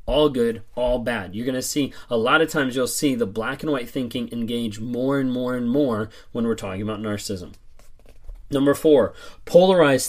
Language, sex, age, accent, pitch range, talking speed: English, male, 30-49, American, 120-155 Hz, 195 wpm